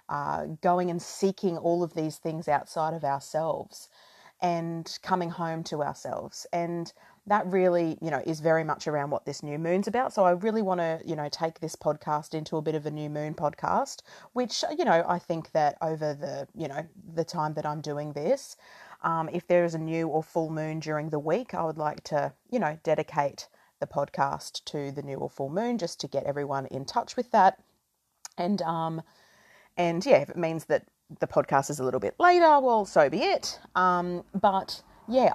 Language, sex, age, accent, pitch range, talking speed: English, female, 30-49, Australian, 155-195 Hz, 205 wpm